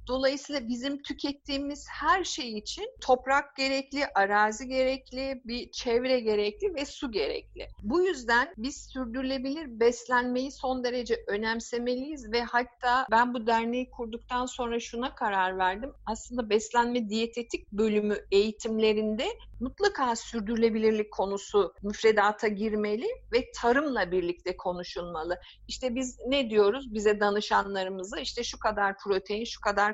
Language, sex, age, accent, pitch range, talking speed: Turkish, female, 50-69, native, 215-265 Hz, 120 wpm